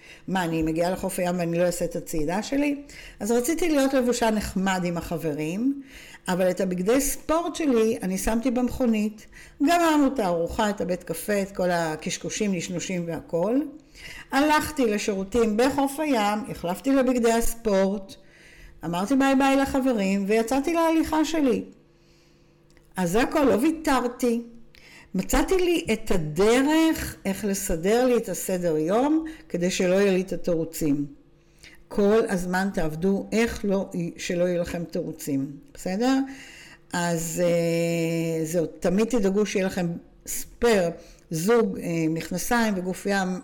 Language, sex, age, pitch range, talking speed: Hebrew, female, 60-79, 170-245 Hz, 130 wpm